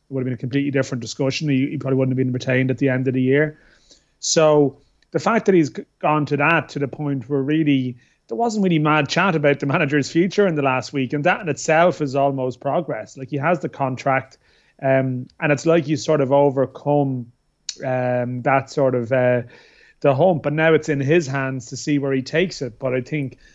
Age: 30-49